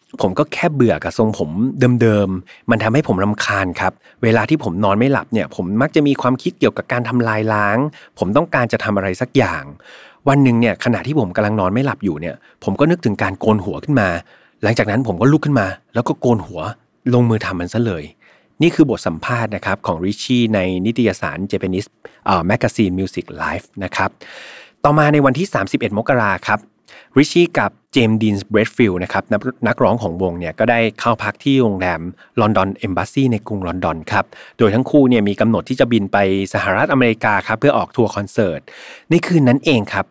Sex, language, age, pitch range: male, Thai, 30-49, 100-130 Hz